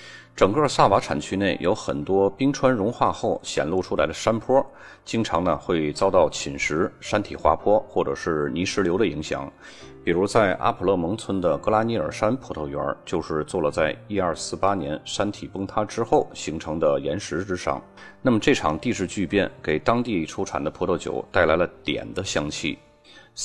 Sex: male